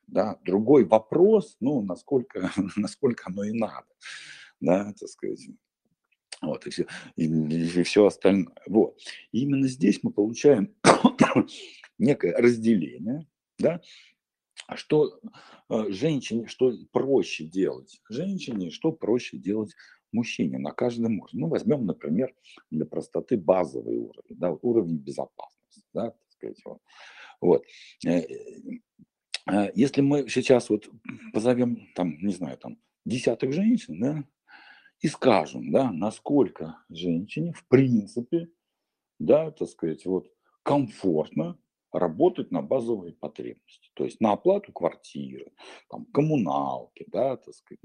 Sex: male